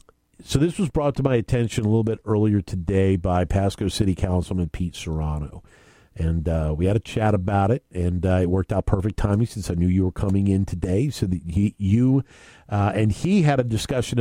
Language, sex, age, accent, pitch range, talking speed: English, male, 50-69, American, 95-135 Hz, 215 wpm